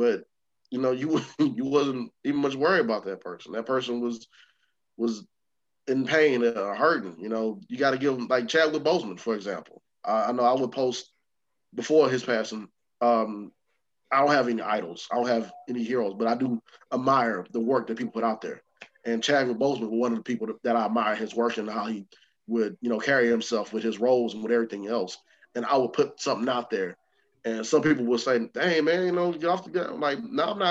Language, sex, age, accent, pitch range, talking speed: English, male, 20-39, American, 115-135 Hz, 225 wpm